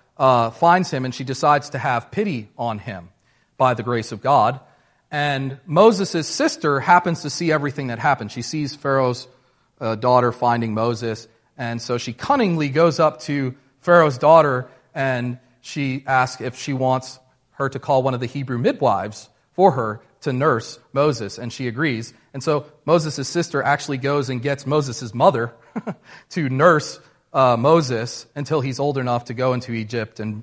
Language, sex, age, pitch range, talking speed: English, male, 40-59, 120-155 Hz, 170 wpm